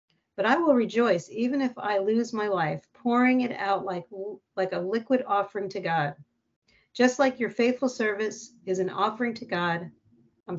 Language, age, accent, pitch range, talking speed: English, 40-59, American, 190-240 Hz, 175 wpm